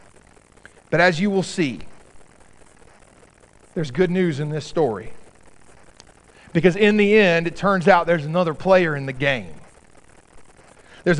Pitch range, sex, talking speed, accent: 130-185 Hz, male, 135 wpm, American